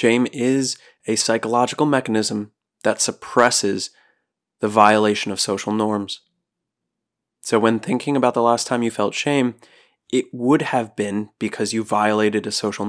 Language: English